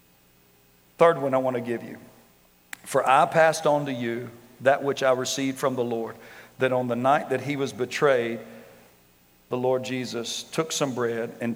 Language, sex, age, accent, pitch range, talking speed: English, male, 50-69, American, 115-135 Hz, 180 wpm